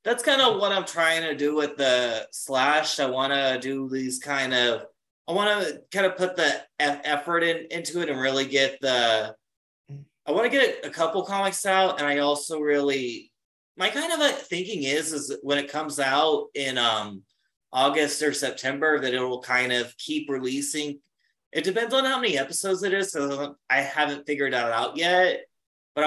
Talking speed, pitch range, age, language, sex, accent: 195 wpm, 130-160 Hz, 30-49, English, male, American